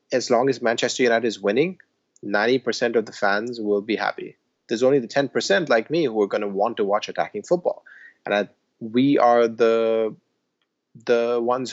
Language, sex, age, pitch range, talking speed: English, male, 30-49, 100-130 Hz, 185 wpm